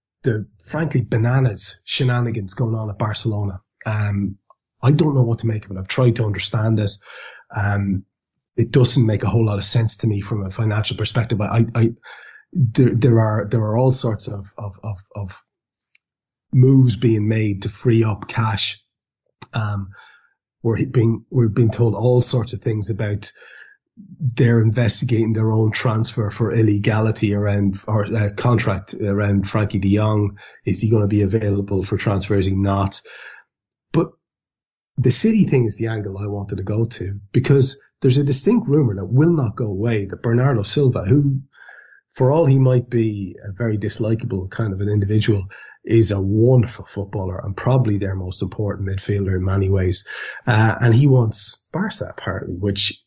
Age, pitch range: 30-49, 100-120 Hz